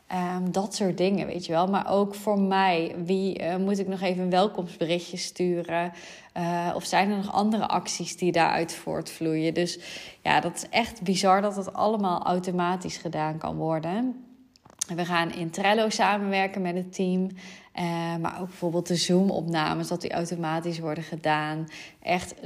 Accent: Dutch